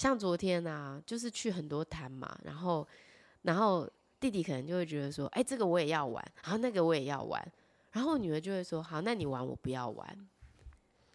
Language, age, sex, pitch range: Chinese, 20-39, female, 145-205 Hz